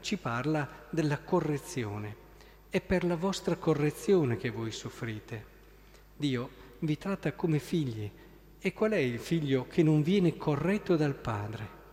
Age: 50-69